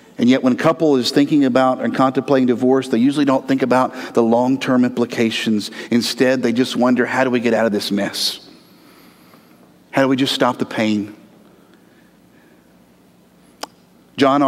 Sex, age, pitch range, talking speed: male, 50-69, 130-195 Hz, 160 wpm